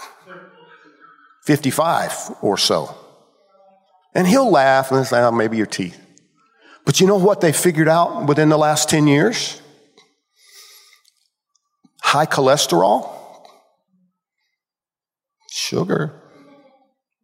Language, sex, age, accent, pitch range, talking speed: English, male, 50-69, American, 160-230 Hz, 95 wpm